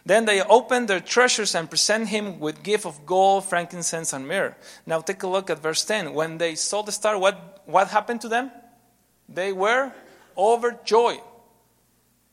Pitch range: 165-210 Hz